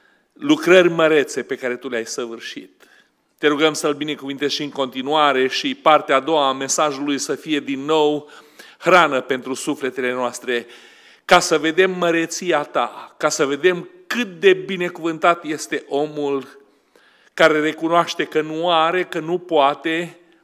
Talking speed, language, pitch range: 145 wpm, Romanian, 140-185 Hz